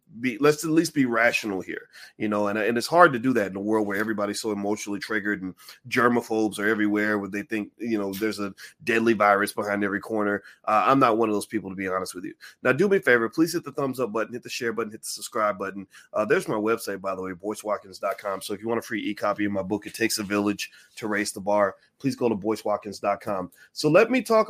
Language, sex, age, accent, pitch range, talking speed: English, male, 30-49, American, 105-135 Hz, 255 wpm